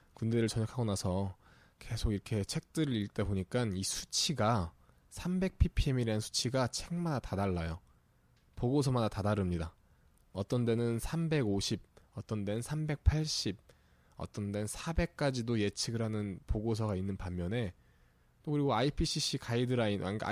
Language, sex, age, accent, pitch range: Korean, male, 20-39, native, 100-145 Hz